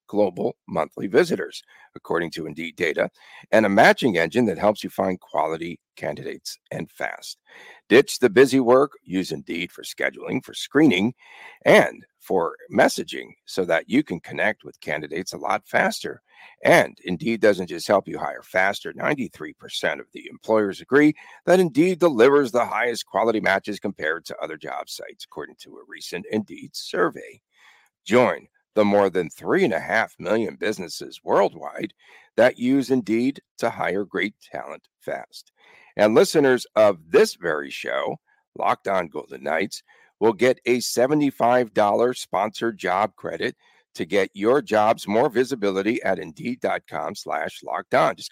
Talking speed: 150 wpm